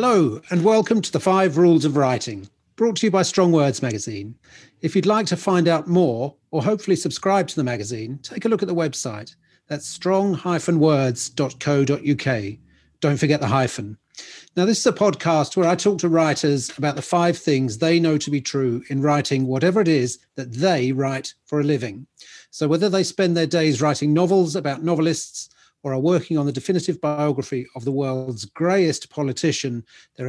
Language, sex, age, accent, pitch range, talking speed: English, male, 40-59, British, 135-175 Hz, 185 wpm